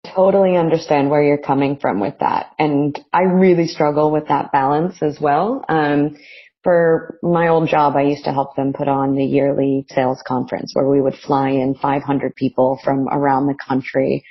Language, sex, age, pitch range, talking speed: English, female, 30-49, 140-160 Hz, 190 wpm